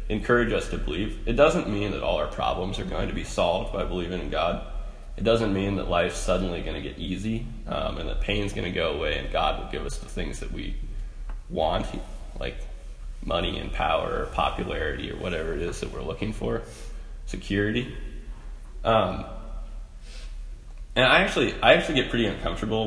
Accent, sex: American, male